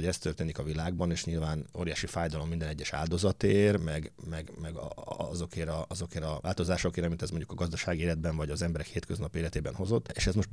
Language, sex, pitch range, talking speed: Hungarian, male, 80-95 Hz, 200 wpm